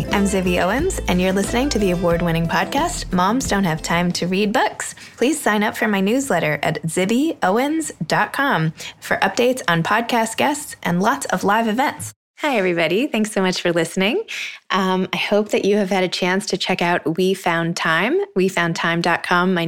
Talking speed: 180 wpm